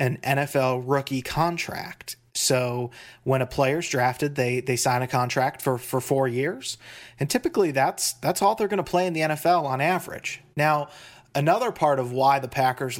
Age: 30-49